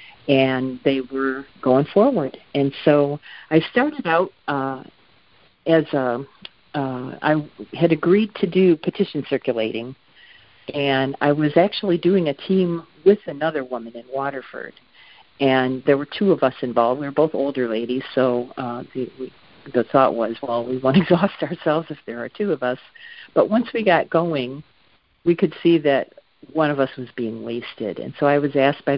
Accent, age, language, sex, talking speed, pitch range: American, 50-69, English, female, 170 wpm, 125-155 Hz